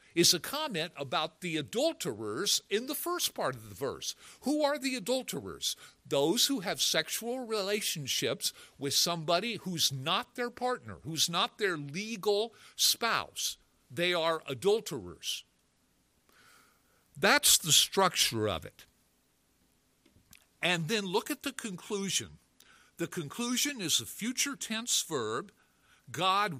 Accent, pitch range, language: American, 145-210 Hz, English